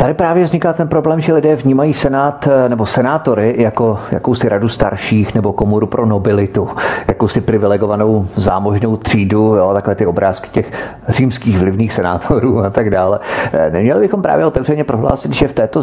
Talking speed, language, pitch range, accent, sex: 160 wpm, Czech, 100-120 Hz, native, male